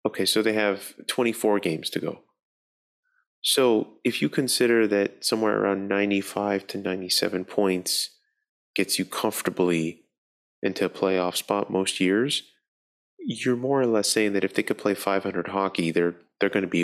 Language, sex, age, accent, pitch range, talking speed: English, male, 20-39, American, 95-115 Hz, 160 wpm